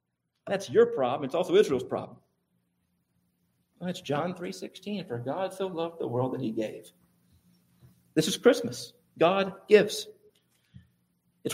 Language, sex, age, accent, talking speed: English, male, 50-69, American, 140 wpm